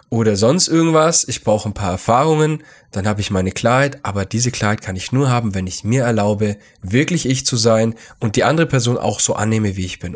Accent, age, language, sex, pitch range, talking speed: German, 10-29, German, male, 105-145 Hz, 225 wpm